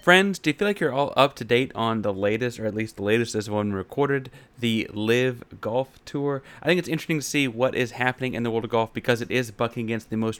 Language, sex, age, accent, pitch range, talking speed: English, male, 30-49, American, 110-130 Hz, 265 wpm